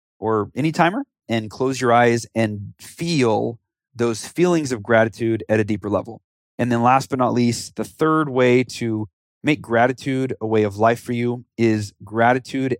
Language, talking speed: English, 175 wpm